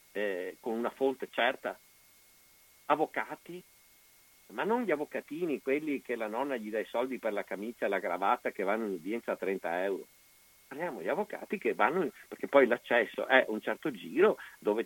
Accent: native